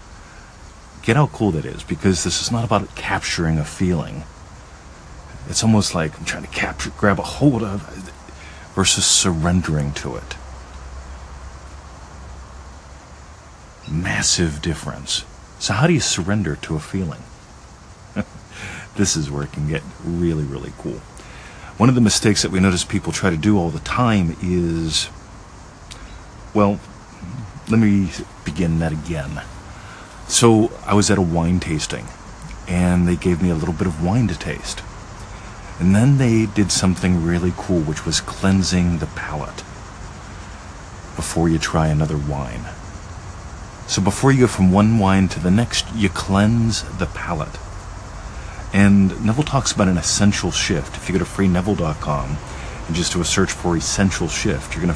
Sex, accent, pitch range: male, American, 75-100 Hz